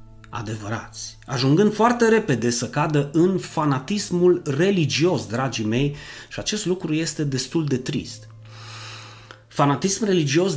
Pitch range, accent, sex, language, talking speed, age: 115-165 Hz, native, male, Romanian, 115 wpm, 30-49